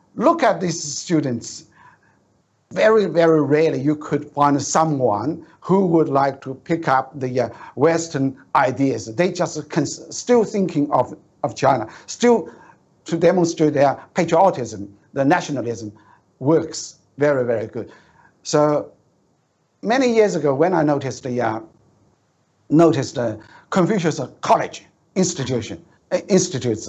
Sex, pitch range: male, 130-175 Hz